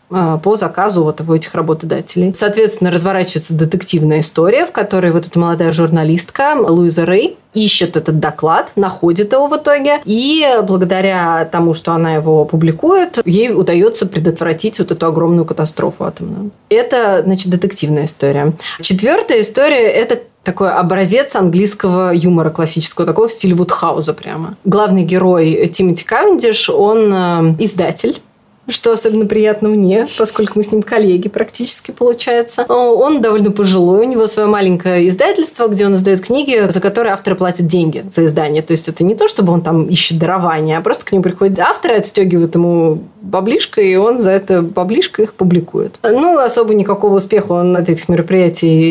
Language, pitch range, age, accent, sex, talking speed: Russian, 175-225 Hz, 20-39, native, female, 160 wpm